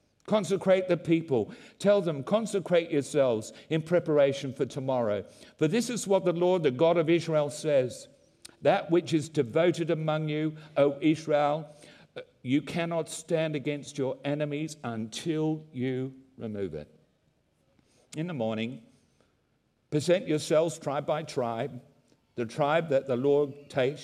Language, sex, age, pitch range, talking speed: English, male, 50-69, 120-160 Hz, 135 wpm